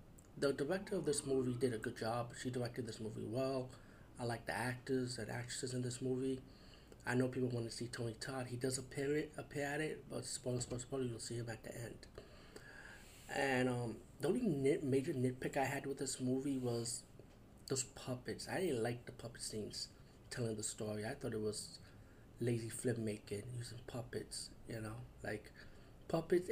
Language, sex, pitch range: English, male, 115-135 Hz